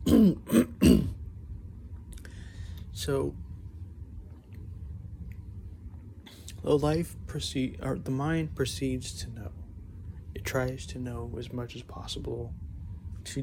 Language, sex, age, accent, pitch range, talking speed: English, male, 30-49, American, 90-115 Hz, 85 wpm